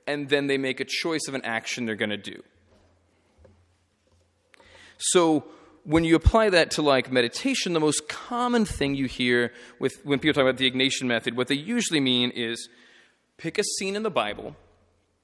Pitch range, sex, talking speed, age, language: 120-155 Hz, male, 180 wpm, 30-49, English